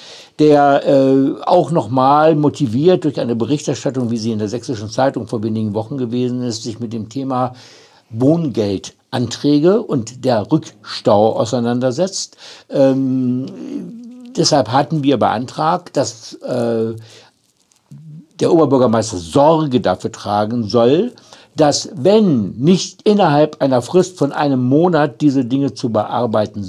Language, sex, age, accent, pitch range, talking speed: German, male, 60-79, German, 120-160 Hz, 125 wpm